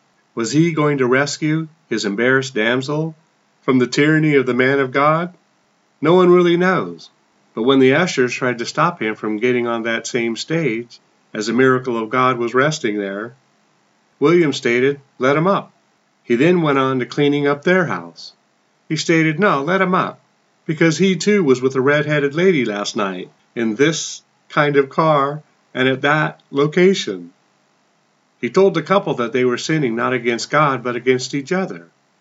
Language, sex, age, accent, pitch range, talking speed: English, male, 40-59, American, 125-160 Hz, 180 wpm